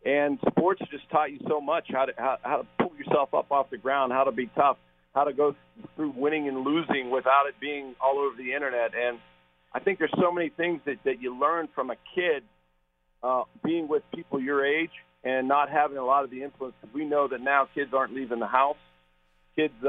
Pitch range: 120-145 Hz